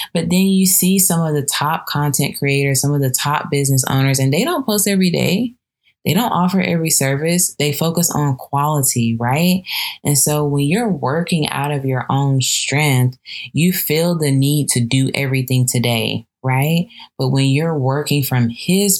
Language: English